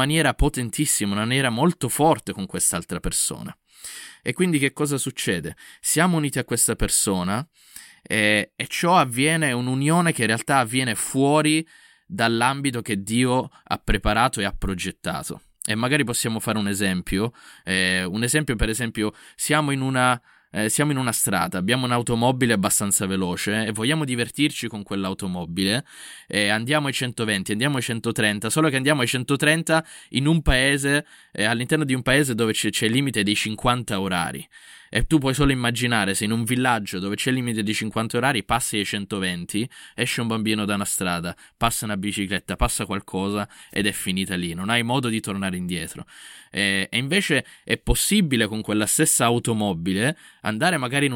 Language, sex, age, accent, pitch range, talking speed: Italian, male, 20-39, native, 105-135 Hz, 170 wpm